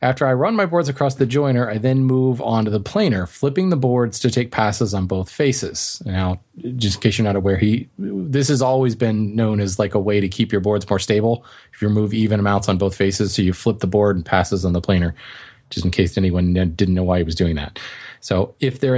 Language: English